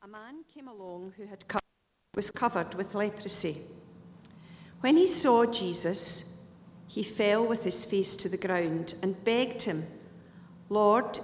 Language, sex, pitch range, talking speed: English, female, 175-215 Hz, 135 wpm